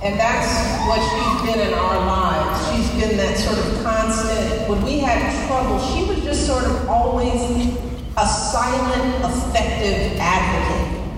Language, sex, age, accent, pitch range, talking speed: English, female, 30-49, American, 175-230 Hz, 150 wpm